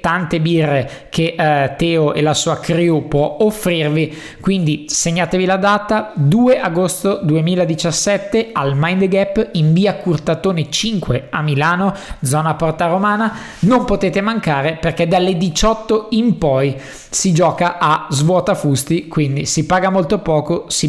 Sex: male